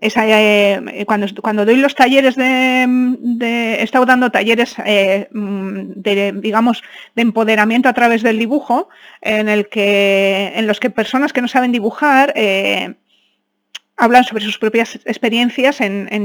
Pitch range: 210-245 Hz